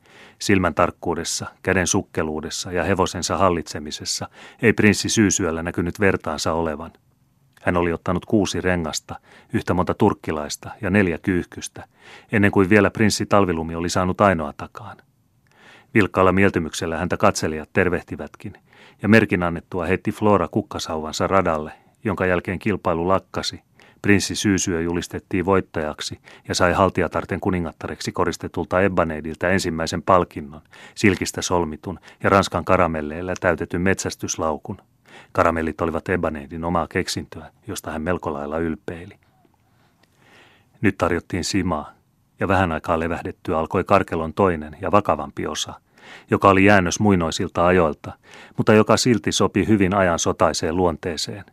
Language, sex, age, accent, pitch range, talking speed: Finnish, male, 30-49, native, 85-100 Hz, 120 wpm